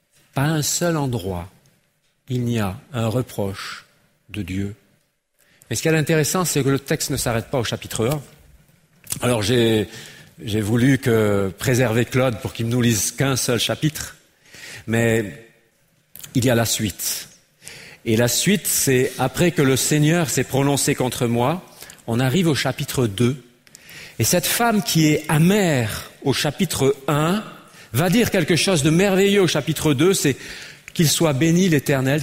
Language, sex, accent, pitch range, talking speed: French, male, French, 120-165 Hz, 160 wpm